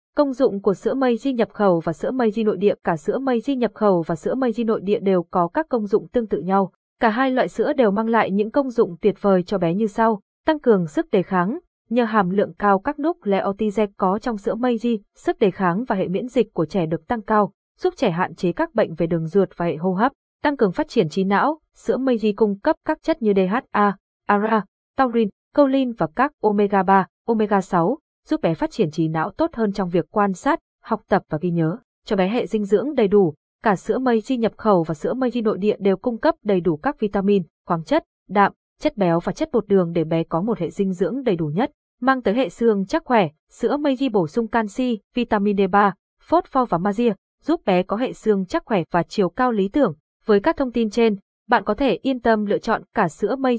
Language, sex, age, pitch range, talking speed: Vietnamese, female, 20-39, 195-245 Hz, 245 wpm